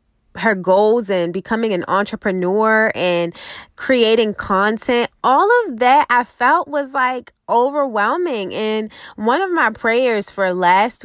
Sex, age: female, 20-39